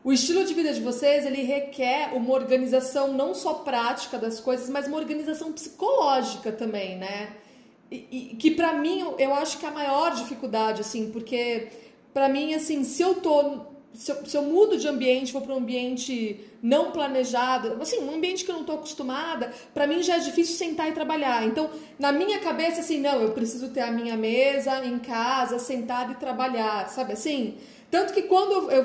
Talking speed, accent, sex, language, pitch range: 195 wpm, Brazilian, female, Portuguese, 250-330 Hz